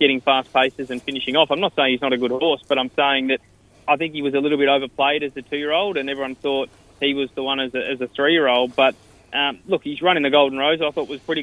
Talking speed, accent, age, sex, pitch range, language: 280 wpm, Australian, 20-39, male, 130-145 Hz, English